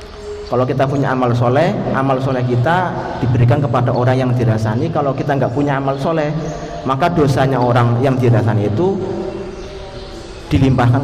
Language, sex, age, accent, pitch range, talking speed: Indonesian, male, 30-49, native, 120-155 Hz, 140 wpm